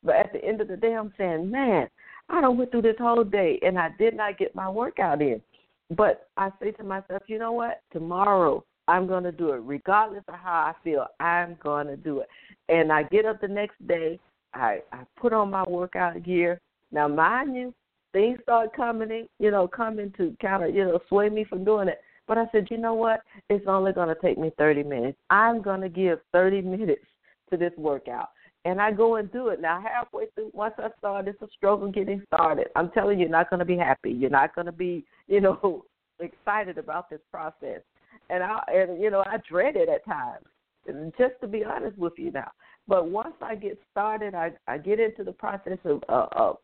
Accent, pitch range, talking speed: American, 175-220 Hz, 225 wpm